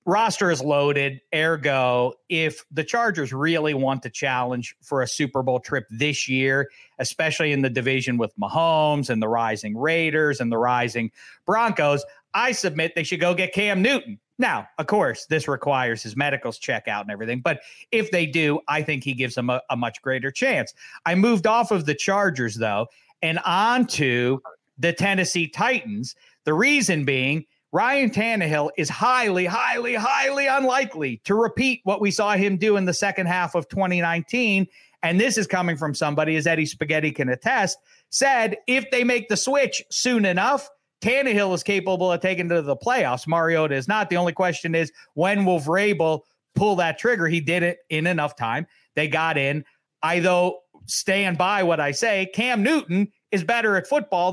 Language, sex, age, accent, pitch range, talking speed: English, male, 40-59, American, 145-205 Hz, 180 wpm